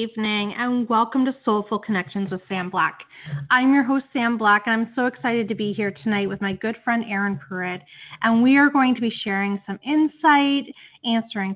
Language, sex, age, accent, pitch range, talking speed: English, female, 30-49, American, 195-240 Hz, 200 wpm